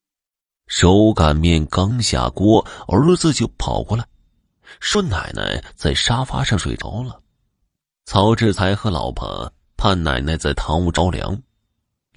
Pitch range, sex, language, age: 75-110 Hz, male, Chinese, 30-49